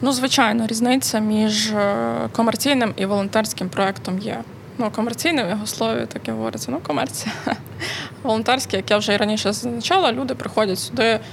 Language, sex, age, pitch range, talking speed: Ukrainian, female, 20-39, 195-255 Hz, 155 wpm